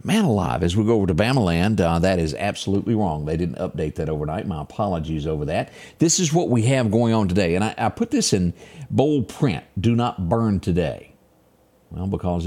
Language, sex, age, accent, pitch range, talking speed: English, male, 50-69, American, 85-115 Hz, 215 wpm